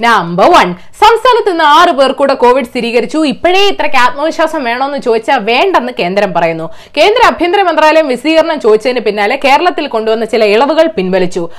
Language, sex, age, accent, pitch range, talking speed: Malayalam, female, 20-39, native, 220-335 Hz, 130 wpm